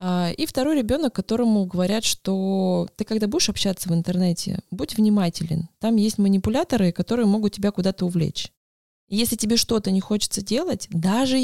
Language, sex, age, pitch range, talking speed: Russian, female, 20-39, 175-220 Hz, 150 wpm